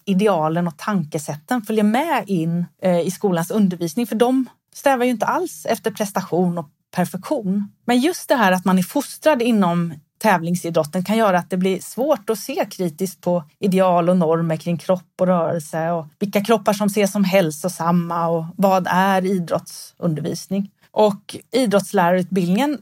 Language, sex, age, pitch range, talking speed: Swedish, female, 30-49, 175-220 Hz, 155 wpm